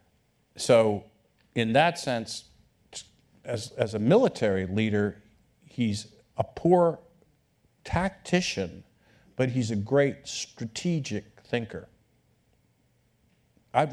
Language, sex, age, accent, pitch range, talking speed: English, male, 50-69, American, 100-130 Hz, 85 wpm